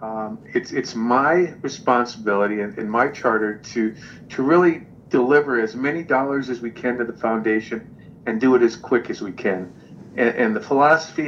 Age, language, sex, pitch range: 50-69, English, male, 110-130 Hz